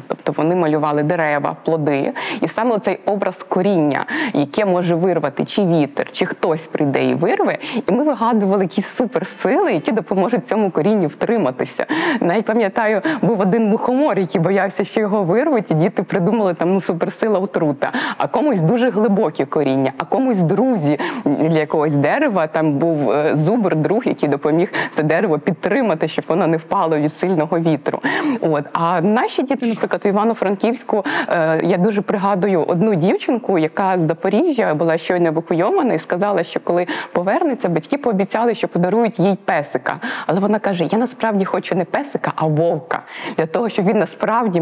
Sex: female